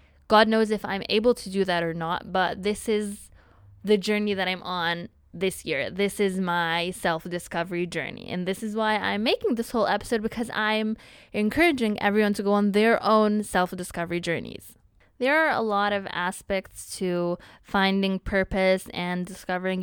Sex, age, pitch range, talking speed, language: female, 20-39, 185-215 Hz, 170 wpm, English